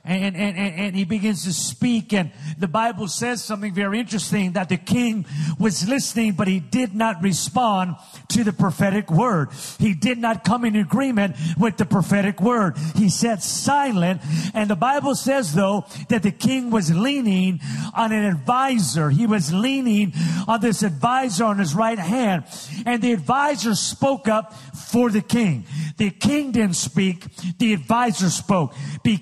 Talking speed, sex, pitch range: 165 wpm, male, 185-240 Hz